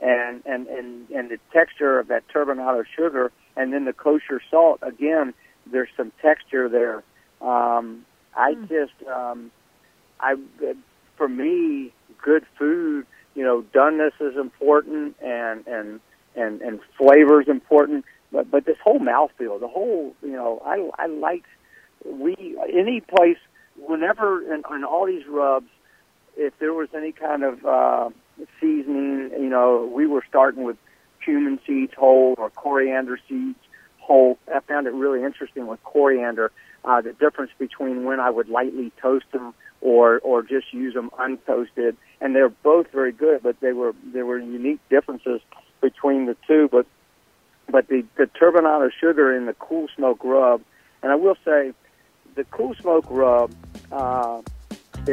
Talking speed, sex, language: 155 wpm, male, English